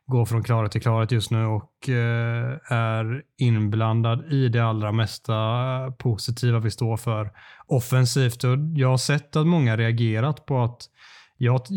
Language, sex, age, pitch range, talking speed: Swedish, male, 20-39, 115-130 Hz, 155 wpm